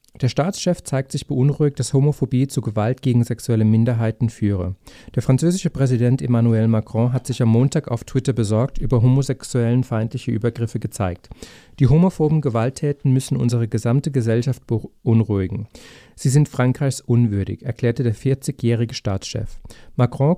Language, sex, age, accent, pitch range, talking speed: German, male, 40-59, German, 115-135 Hz, 140 wpm